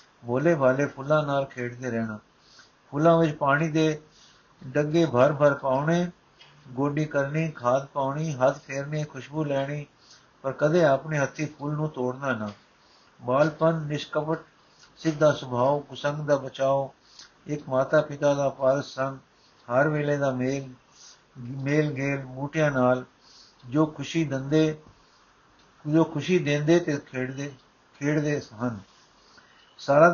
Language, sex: Punjabi, male